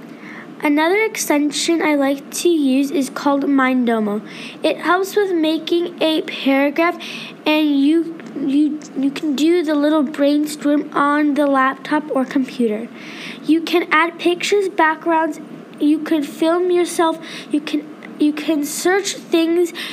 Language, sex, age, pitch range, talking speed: English, female, 10-29, 285-330 Hz, 125 wpm